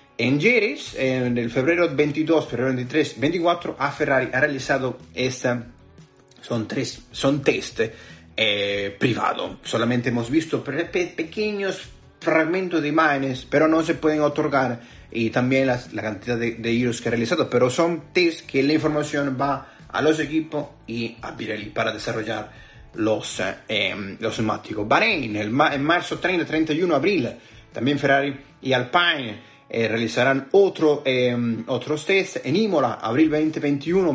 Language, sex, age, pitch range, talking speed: Spanish, male, 30-49, 120-160 Hz, 140 wpm